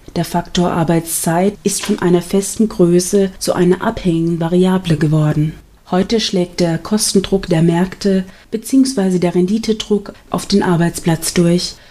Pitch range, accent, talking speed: 175-200 Hz, German, 130 wpm